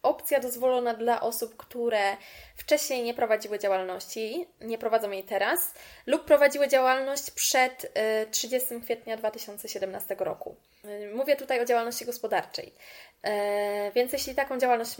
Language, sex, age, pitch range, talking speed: Polish, female, 20-39, 205-270 Hz, 120 wpm